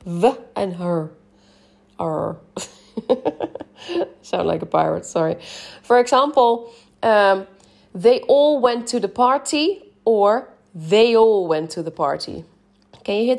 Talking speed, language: 125 wpm, English